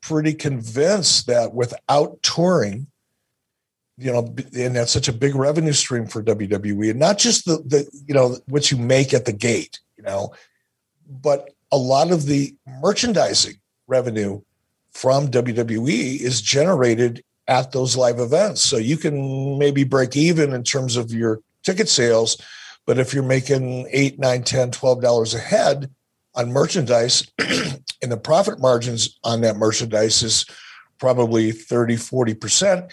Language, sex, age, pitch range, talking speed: English, male, 50-69, 120-145 Hz, 145 wpm